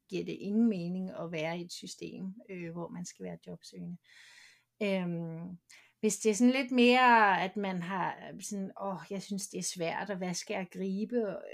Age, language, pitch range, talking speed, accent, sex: 30-49, Danish, 190-230 Hz, 200 wpm, native, female